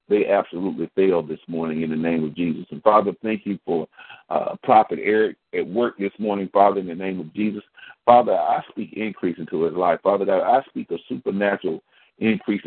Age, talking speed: 50-69, 200 wpm